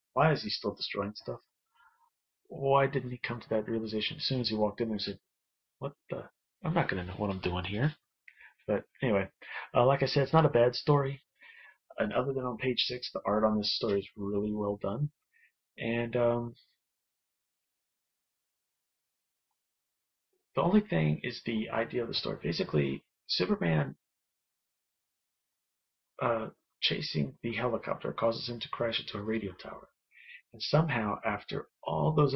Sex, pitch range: male, 110-140 Hz